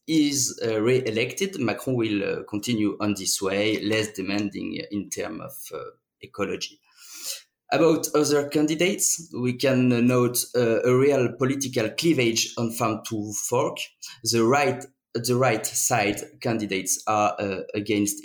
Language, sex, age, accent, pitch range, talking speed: English, male, 30-49, French, 105-125 Hz, 135 wpm